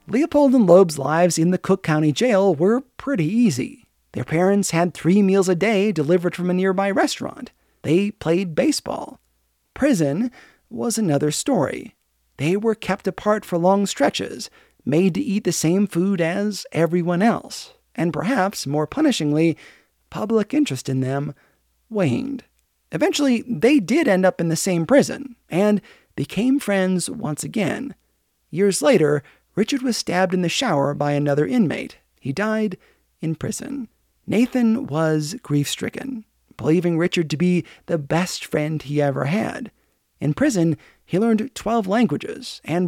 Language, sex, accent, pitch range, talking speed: English, male, American, 160-225 Hz, 145 wpm